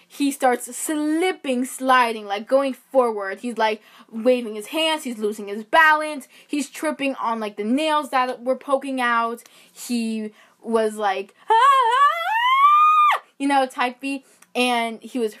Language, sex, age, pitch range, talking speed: English, female, 10-29, 220-285 Hz, 140 wpm